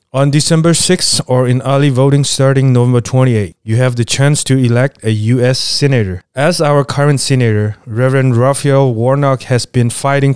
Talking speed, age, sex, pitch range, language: 170 wpm, 30-49, male, 115-135 Hz, English